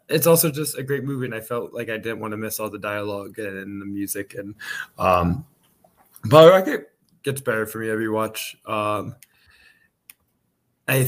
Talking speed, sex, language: 180 wpm, male, English